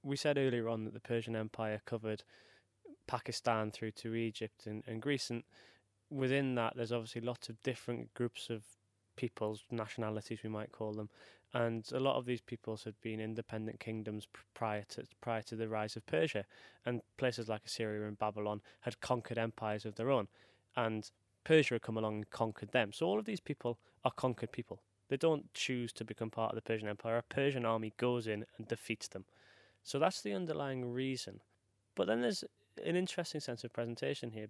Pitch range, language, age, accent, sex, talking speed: 105-125 Hz, English, 20-39, British, male, 190 wpm